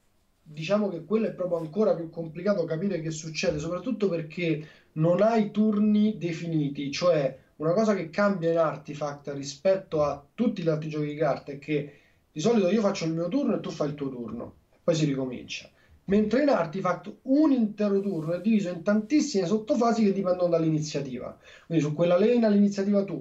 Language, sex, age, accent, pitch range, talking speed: Italian, male, 30-49, native, 155-205 Hz, 180 wpm